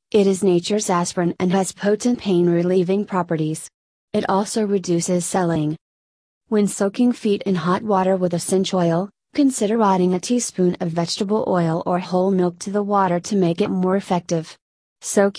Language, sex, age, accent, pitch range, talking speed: English, female, 30-49, American, 175-200 Hz, 170 wpm